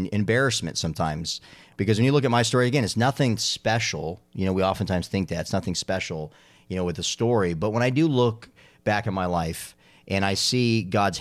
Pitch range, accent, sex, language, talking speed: 85-105 Hz, American, male, English, 215 wpm